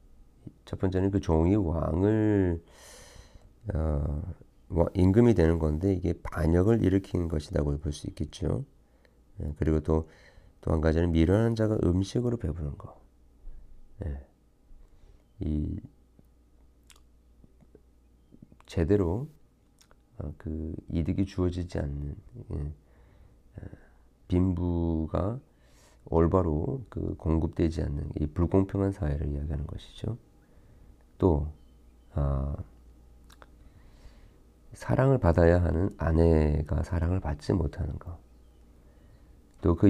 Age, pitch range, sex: 40-59, 70-95 Hz, male